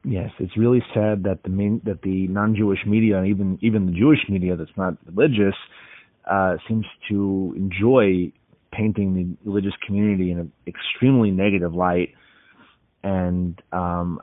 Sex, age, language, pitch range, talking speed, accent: male, 30-49, English, 95-105 Hz, 150 wpm, American